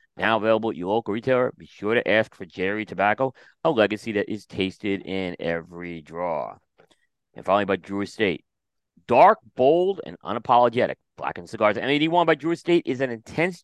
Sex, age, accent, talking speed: male, 40-59, American, 175 wpm